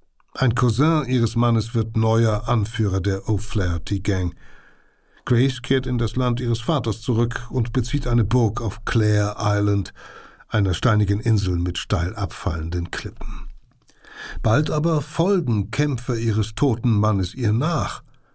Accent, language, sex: German, German, male